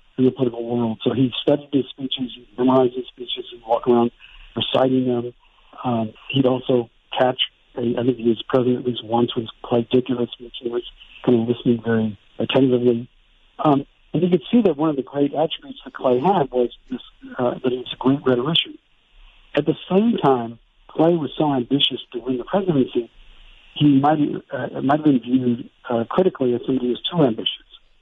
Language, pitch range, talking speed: English, 120-150 Hz, 195 wpm